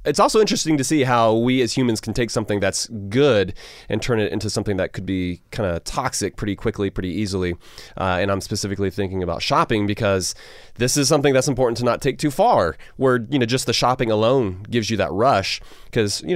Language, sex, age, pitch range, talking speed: English, male, 30-49, 100-130 Hz, 220 wpm